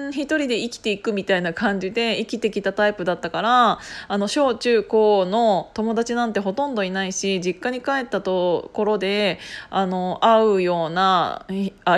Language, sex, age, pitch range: Japanese, female, 20-39, 190-265 Hz